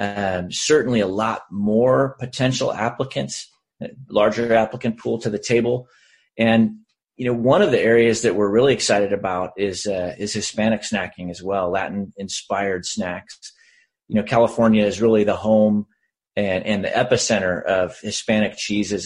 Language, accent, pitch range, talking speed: English, American, 105-125 Hz, 155 wpm